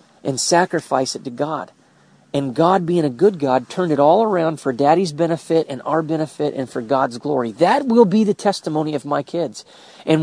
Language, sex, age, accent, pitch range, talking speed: English, male, 40-59, American, 145-205 Hz, 200 wpm